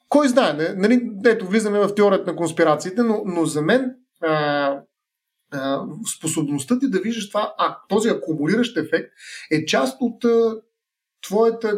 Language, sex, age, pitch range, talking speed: Bulgarian, male, 30-49, 175-235 Hz, 150 wpm